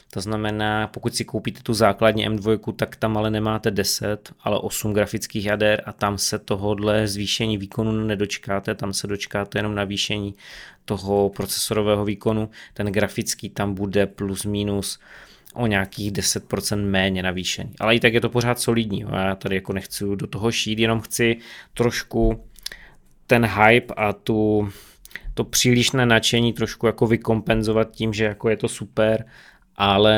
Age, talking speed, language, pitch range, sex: 20-39, 155 wpm, Czech, 105-115 Hz, male